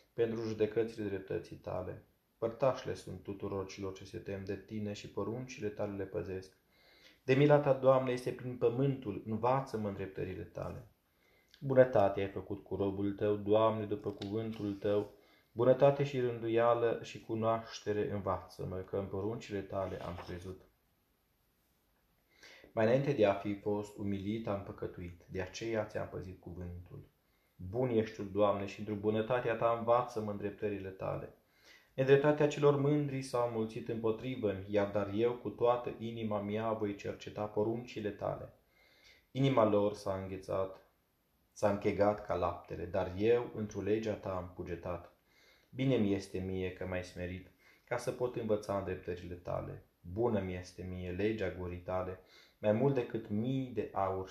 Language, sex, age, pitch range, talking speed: Romanian, male, 20-39, 95-115 Hz, 150 wpm